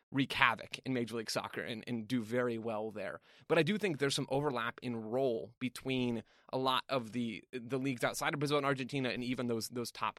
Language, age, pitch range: English, 20-39, 115-140 Hz